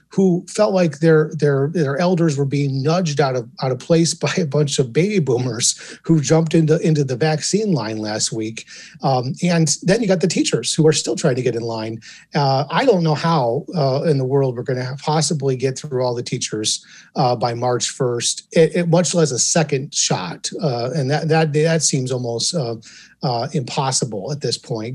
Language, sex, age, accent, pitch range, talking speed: English, male, 30-49, American, 130-165 Hz, 210 wpm